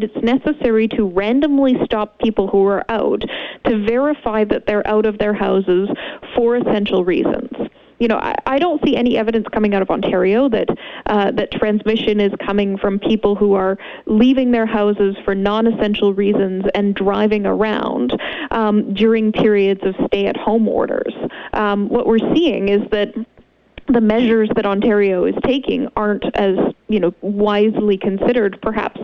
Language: English